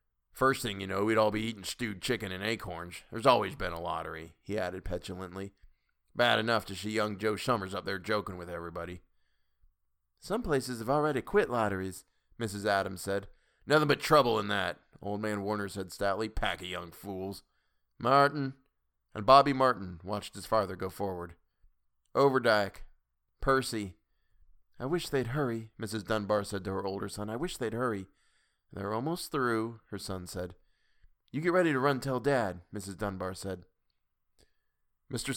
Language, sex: English, male